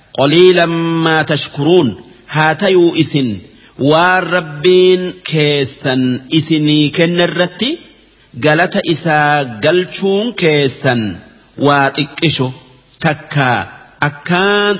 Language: Arabic